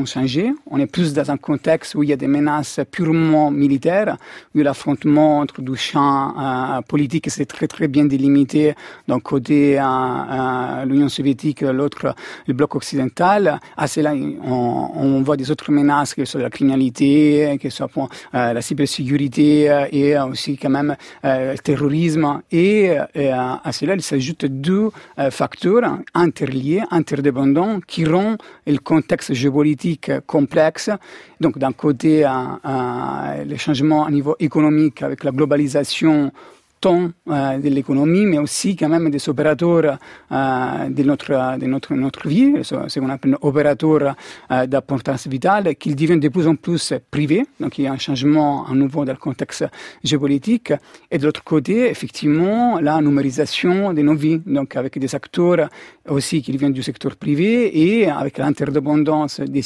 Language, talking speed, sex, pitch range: French, 160 wpm, male, 135-155 Hz